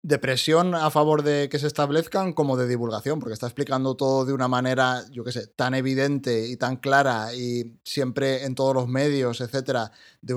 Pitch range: 120-140 Hz